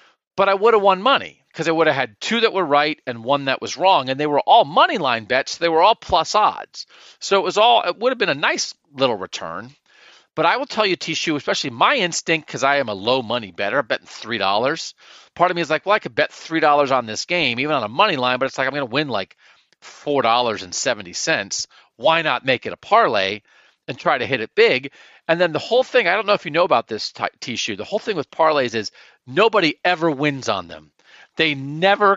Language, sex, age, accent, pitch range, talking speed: English, male, 40-59, American, 150-220 Hz, 250 wpm